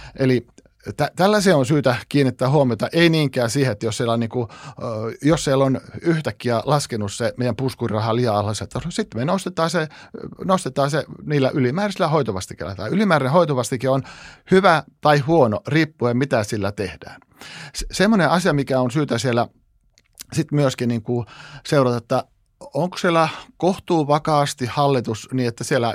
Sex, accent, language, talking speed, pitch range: male, native, Finnish, 155 wpm, 115-145 Hz